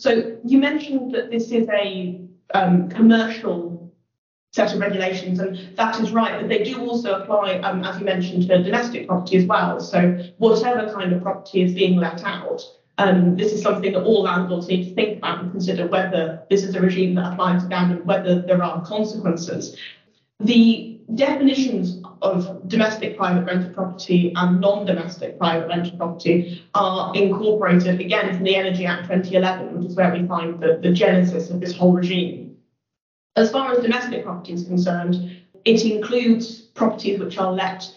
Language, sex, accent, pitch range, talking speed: English, female, British, 180-210 Hz, 175 wpm